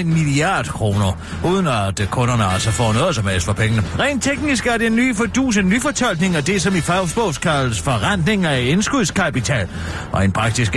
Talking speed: 175 wpm